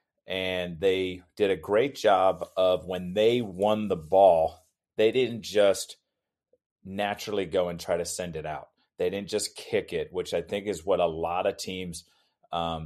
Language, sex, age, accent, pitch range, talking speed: English, male, 30-49, American, 90-125 Hz, 175 wpm